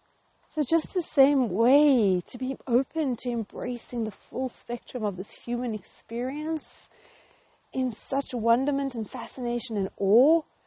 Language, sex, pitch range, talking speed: English, female, 195-260 Hz, 135 wpm